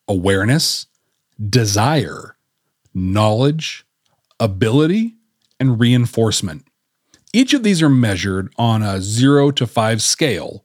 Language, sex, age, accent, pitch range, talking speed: English, male, 40-59, American, 110-145 Hz, 95 wpm